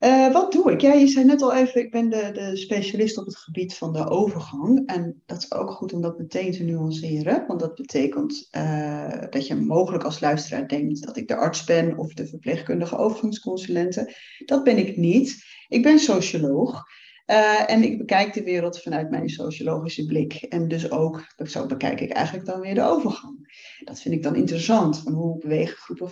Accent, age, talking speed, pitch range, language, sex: Dutch, 30-49, 200 wpm, 165-235 Hz, Dutch, female